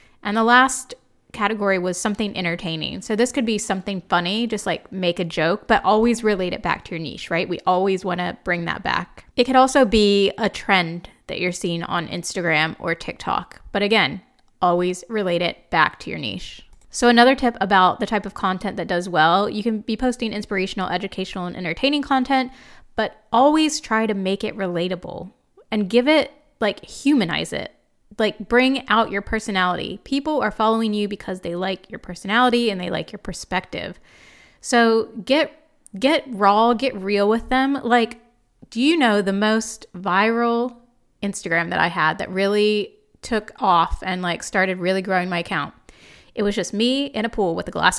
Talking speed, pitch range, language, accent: 185 wpm, 185-240 Hz, English, American